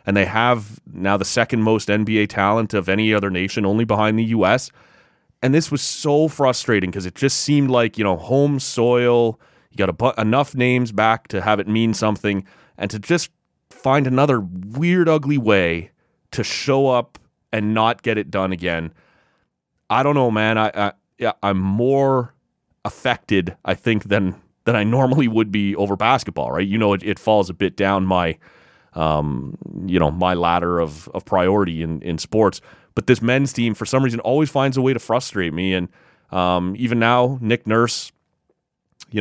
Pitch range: 100-125 Hz